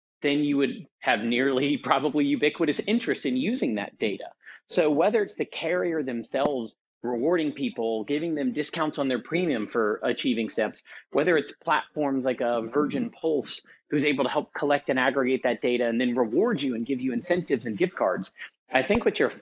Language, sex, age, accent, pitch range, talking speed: English, male, 30-49, American, 125-165 Hz, 185 wpm